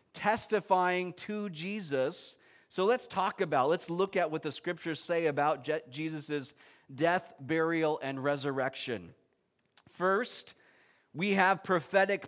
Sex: male